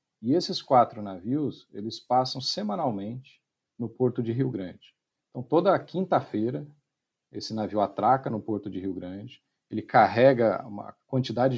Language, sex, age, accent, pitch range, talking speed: Portuguese, male, 50-69, Brazilian, 105-135 Hz, 140 wpm